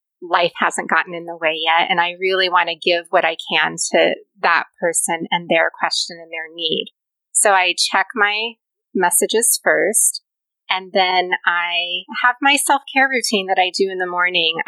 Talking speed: 180 wpm